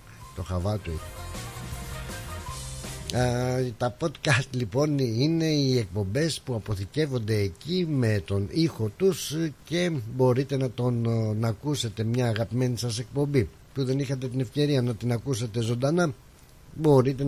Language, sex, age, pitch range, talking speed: Greek, male, 60-79, 100-130 Hz, 125 wpm